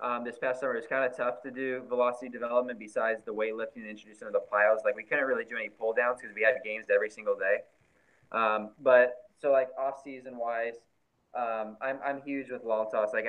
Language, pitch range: English, 110-130 Hz